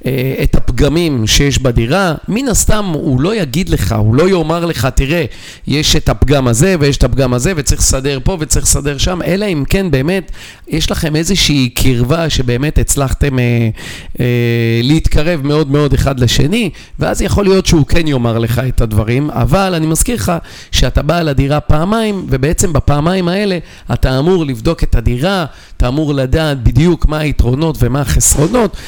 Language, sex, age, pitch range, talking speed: Hebrew, male, 40-59, 125-165 Hz, 165 wpm